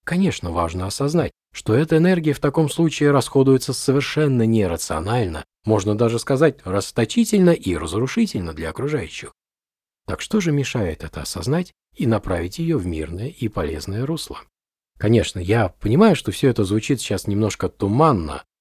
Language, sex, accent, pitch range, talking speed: Russian, male, native, 90-140 Hz, 140 wpm